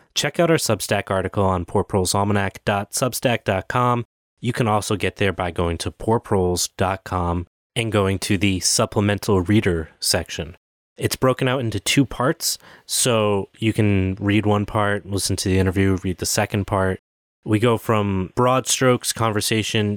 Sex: male